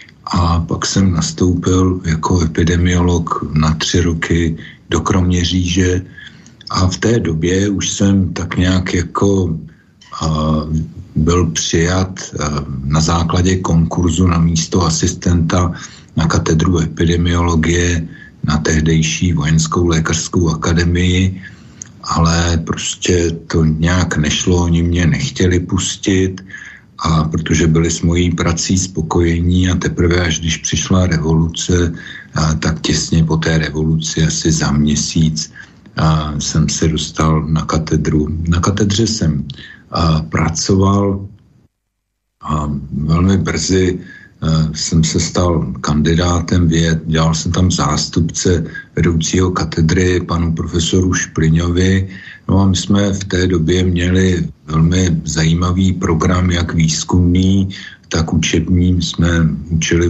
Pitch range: 80-90 Hz